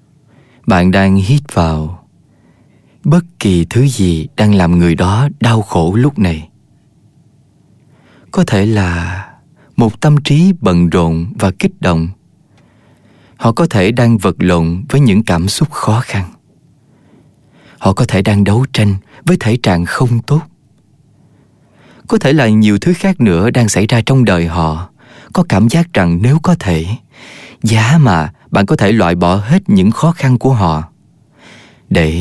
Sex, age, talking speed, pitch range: male, 20-39, 155 wpm, 90-140 Hz